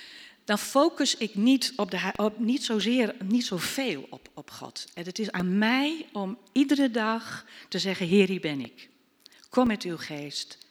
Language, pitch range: Dutch, 165-235 Hz